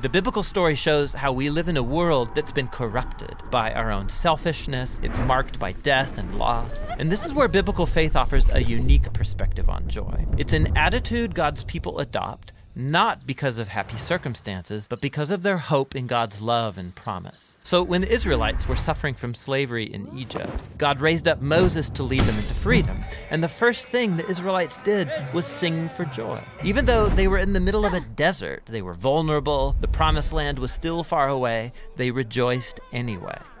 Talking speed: 200 wpm